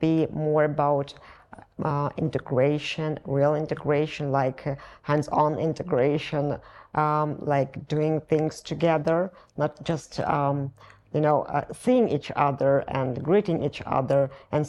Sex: female